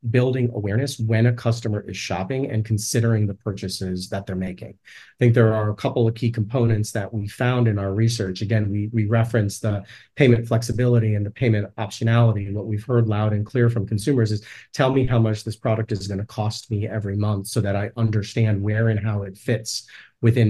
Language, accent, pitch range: English, American, 105-120 Hz